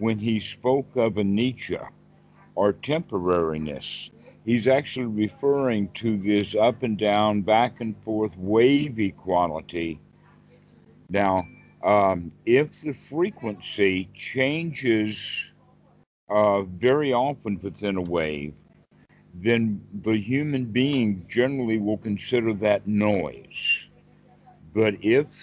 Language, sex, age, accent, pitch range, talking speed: English, male, 60-79, American, 100-125 Hz, 105 wpm